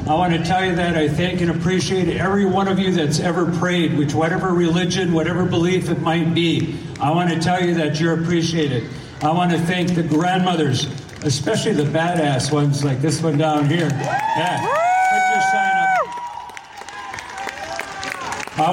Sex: male